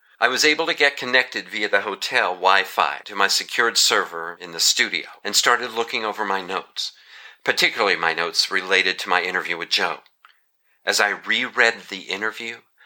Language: English